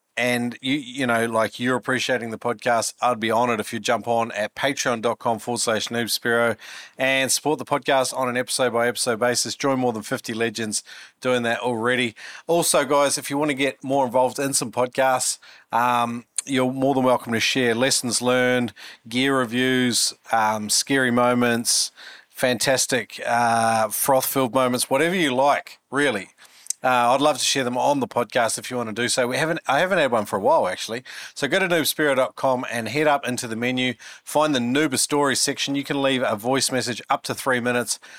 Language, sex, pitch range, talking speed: English, male, 115-130 Hz, 190 wpm